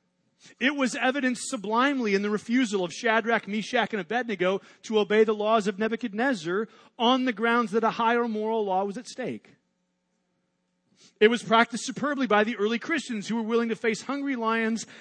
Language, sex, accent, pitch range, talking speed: English, male, American, 165-225 Hz, 175 wpm